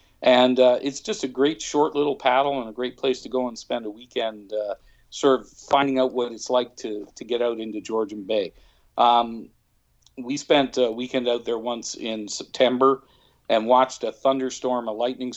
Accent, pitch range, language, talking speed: American, 110-130 Hz, English, 195 wpm